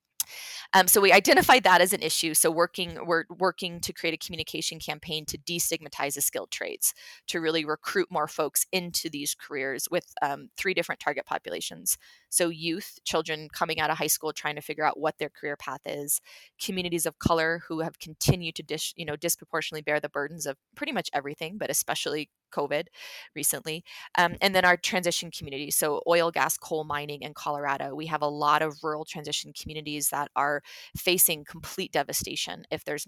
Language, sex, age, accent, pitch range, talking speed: English, female, 20-39, American, 150-175 Hz, 185 wpm